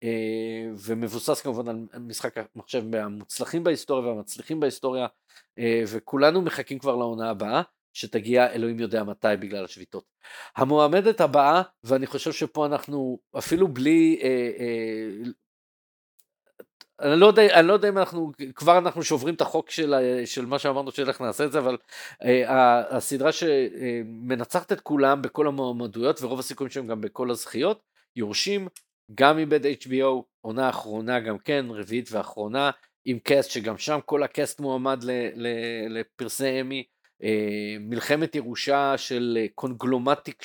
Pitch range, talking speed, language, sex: 115-145 Hz, 65 wpm, Hebrew, male